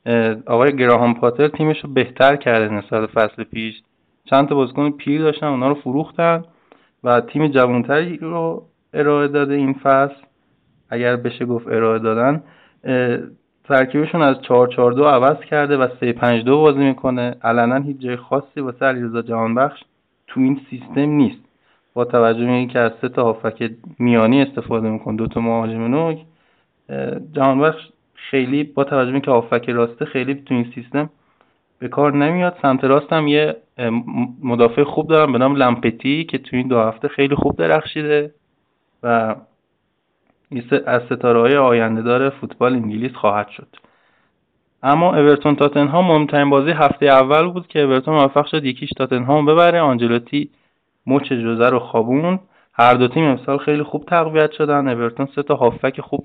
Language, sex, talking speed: Persian, male, 145 wpm